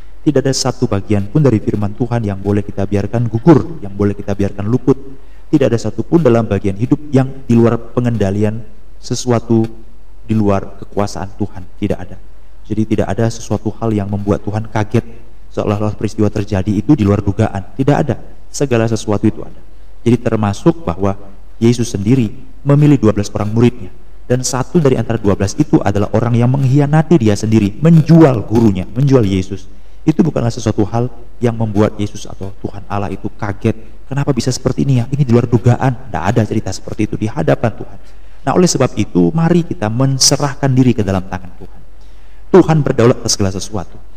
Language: Indonesian